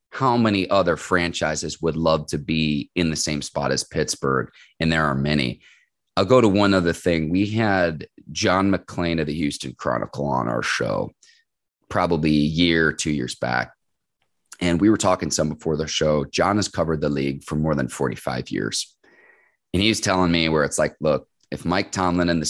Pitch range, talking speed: 75-95 Hz, 190 wpm